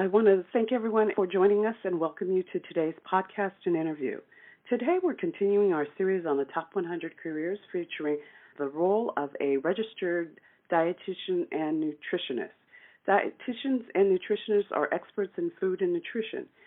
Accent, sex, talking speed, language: American, female, 160 wpm, English